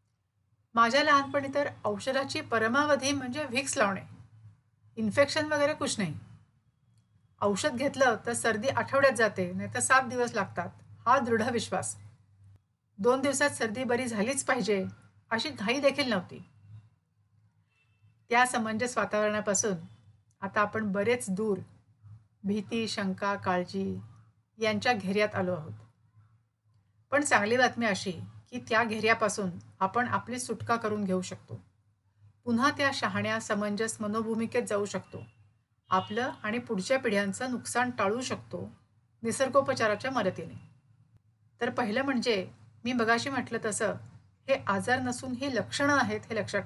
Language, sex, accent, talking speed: Marathi, female, native, 120 wpm